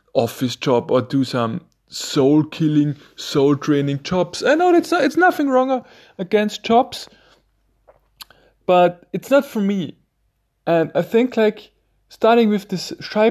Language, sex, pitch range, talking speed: German, male, 130-200 Hz, 130 wpm